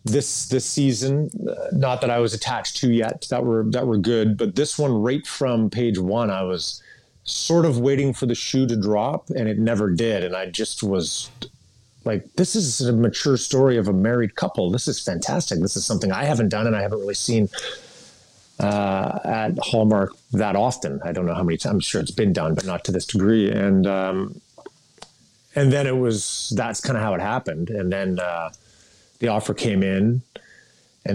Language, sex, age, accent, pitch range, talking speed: English, male, 30-49, American, 100-125 Hz, 200 wpm